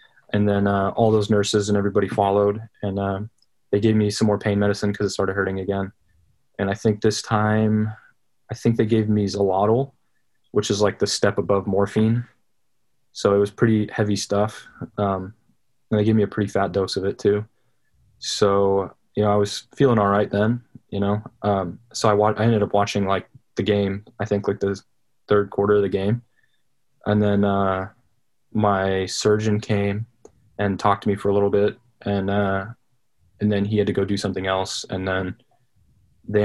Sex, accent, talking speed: male, American, 195 wpm